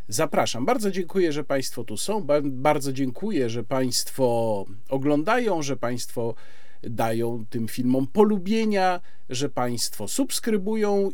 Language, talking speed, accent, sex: Polish, 115 wpm, native, male